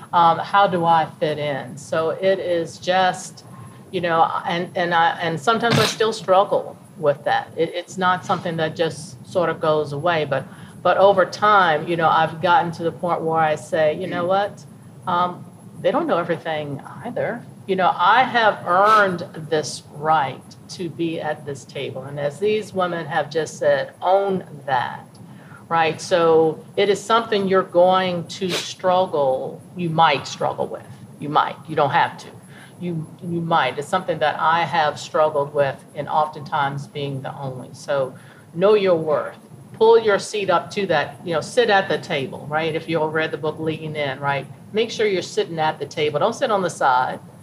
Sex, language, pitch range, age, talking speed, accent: female, English, 155-185 Hz, 50-69, 185 wpm, American